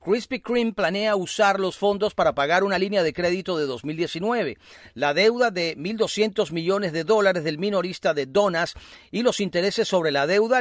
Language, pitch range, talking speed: Spanish, 165-205 Hz, 175 wpm